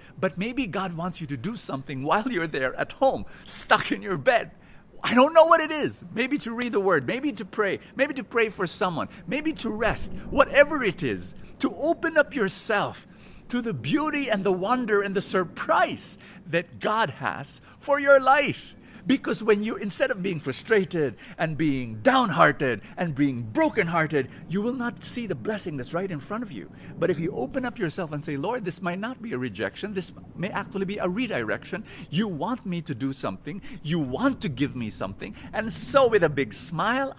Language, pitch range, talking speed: English, 160-245 Hz, 200 wpm